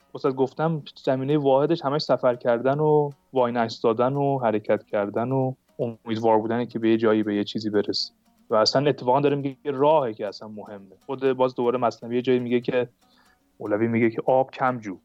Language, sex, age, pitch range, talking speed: Persian, male, 30-49, 110-140 Hz, 185 wpm